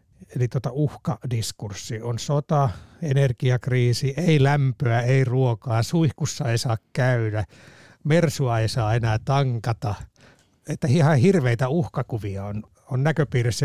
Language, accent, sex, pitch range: Finnish, native, male, 115-150 Hz